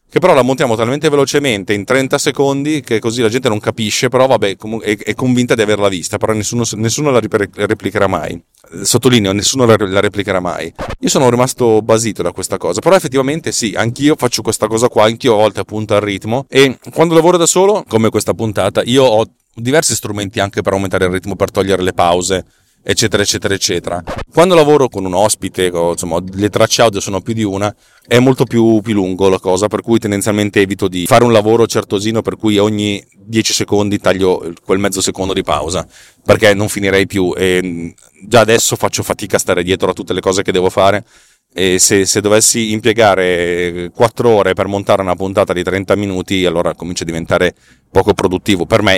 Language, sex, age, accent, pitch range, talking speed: Italian, male, 40-59, native, 95-125 Hz, 195 wpm